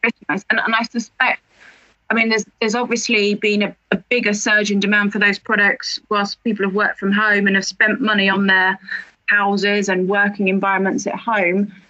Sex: female